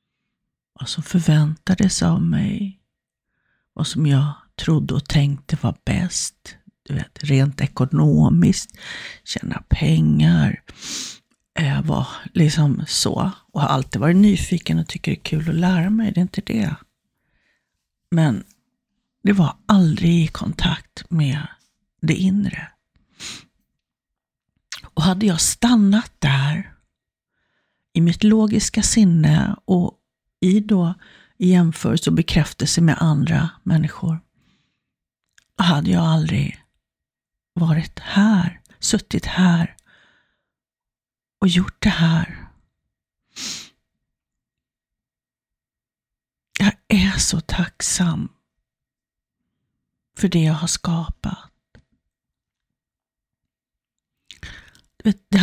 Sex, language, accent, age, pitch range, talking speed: female, Swedish, native, 50-69, 155-195 Hz, 95 wpm